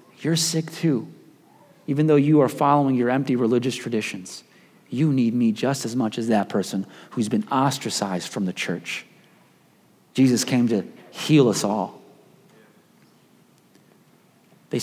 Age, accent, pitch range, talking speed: 30-49, American, 120-155 Hz, 140 wpm